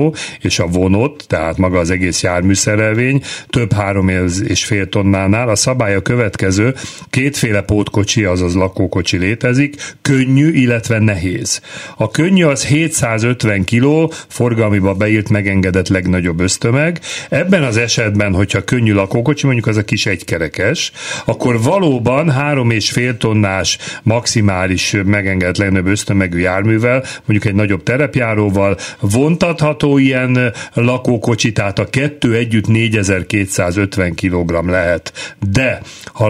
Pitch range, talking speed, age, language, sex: 95-125 Hz, 120 wpm, 40-59, Hungarian, male